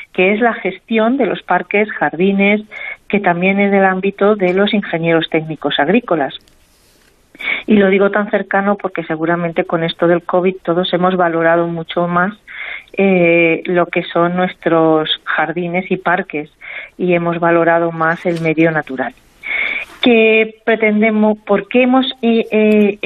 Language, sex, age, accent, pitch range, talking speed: Spanish, female, 40-59, Spanish, 170-215 Hz, 145 wpm